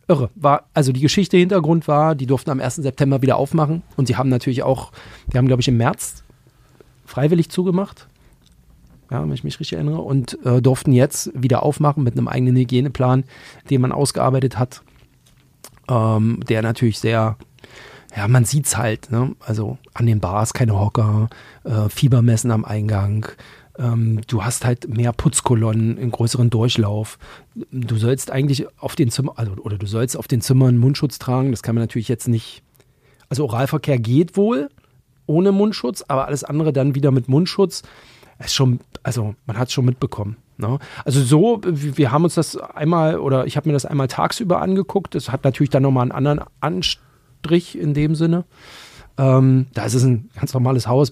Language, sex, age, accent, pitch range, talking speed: German, male, 40-59, German, 120-145 Hz, 180 wpm